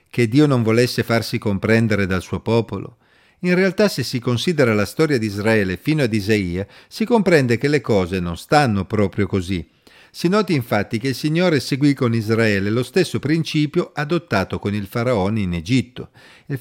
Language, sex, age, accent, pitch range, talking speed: Italian, male, 50-69, native, 105-155 Hz, 175 wpm